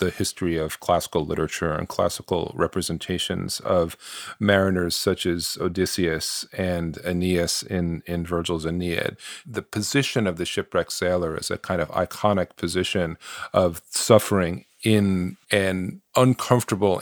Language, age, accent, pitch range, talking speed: English, 40-59, American, 85-105 Hz, 125 wpm